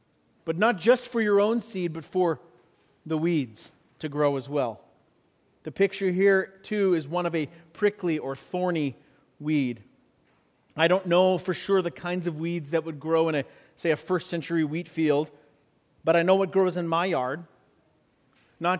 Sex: male